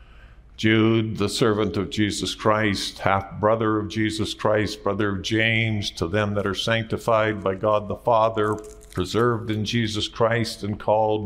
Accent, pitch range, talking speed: American, 100-115 Hz, 155 wpm